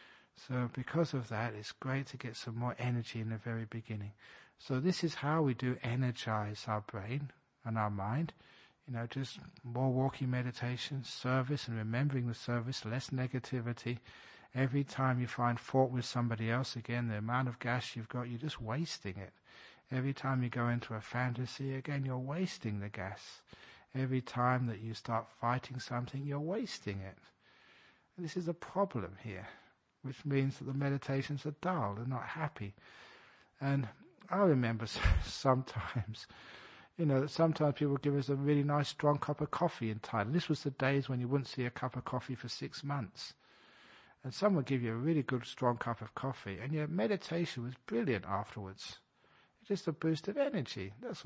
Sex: male